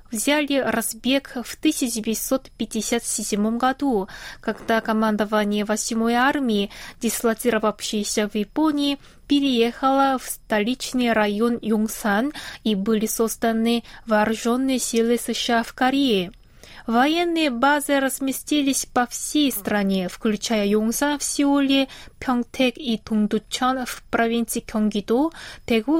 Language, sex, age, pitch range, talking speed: Russian, female, 20-39, 215-265 Hz, 95 wpm